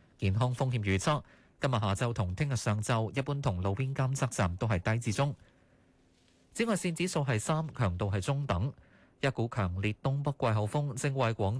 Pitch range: 100-145 Hz